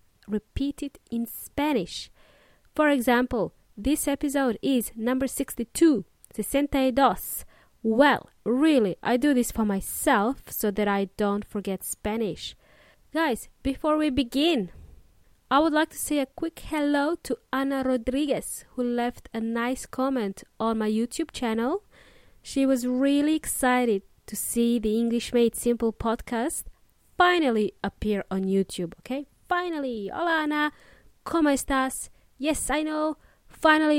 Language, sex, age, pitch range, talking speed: English, female, 20-39, 230-290 Hz, 130 wpm